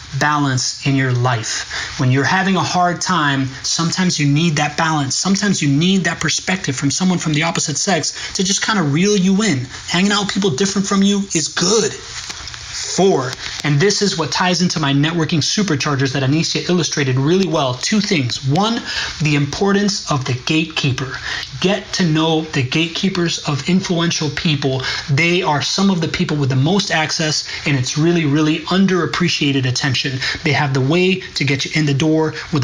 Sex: male